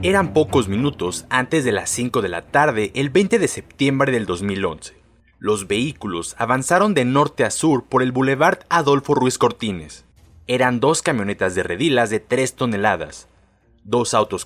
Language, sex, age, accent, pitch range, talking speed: Spanish, male, 30-49, Mexican, 100-140 Hz, 160 wpm